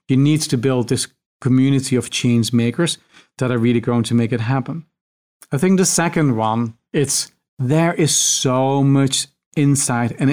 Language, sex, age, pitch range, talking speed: English, male, 40-59, 120-135 Hz, 170 wpm